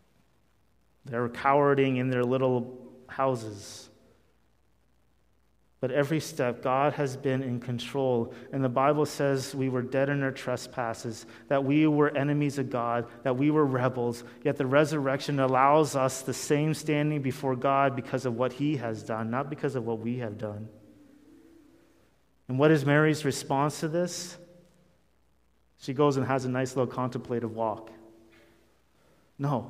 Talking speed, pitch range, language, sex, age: 150 wpm, 120-160 Hz, English, male, 30-49